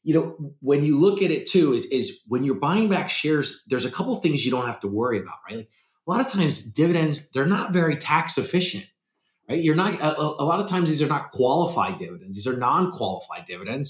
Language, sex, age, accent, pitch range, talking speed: English, male, 30-49, American, 110-155 Hz, 235 wpm